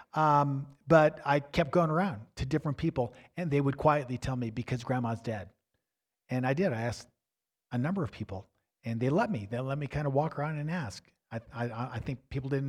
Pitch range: 115-175 Hz